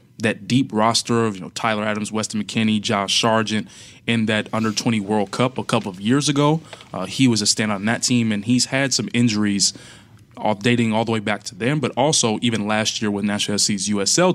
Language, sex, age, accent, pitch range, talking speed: English, male, 20-39, American, 105-125 Hz, 220 wpm